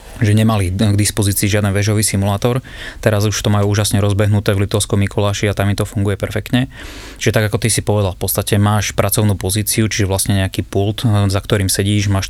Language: Slovak